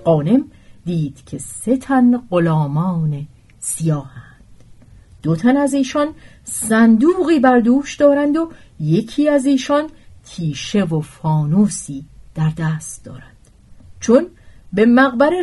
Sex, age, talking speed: female, 40-59, 100 wpm